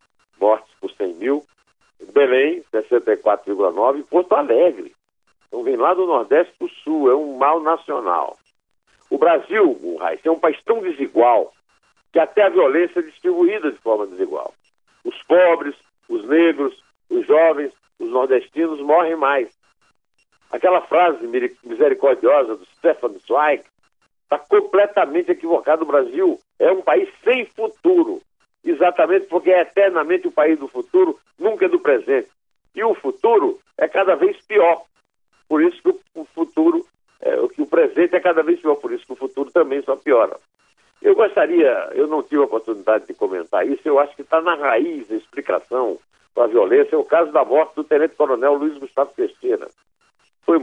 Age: 60-79